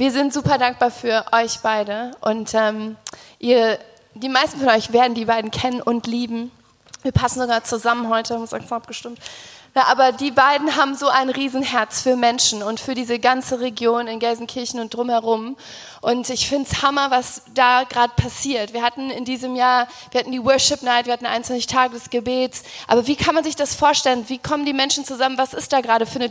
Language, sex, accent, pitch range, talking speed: German, female, German, 220-255 Hz, 205 wpm